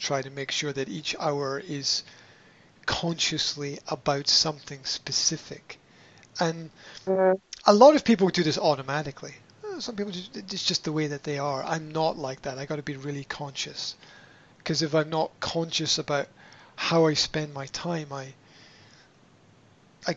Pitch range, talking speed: 145-185 Hz, 155 wpm